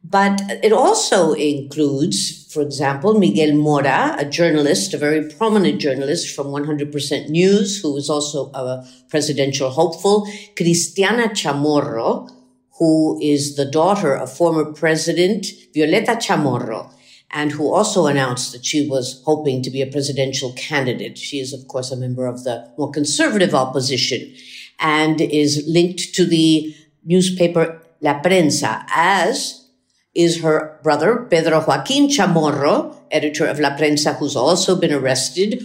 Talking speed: 135 wpm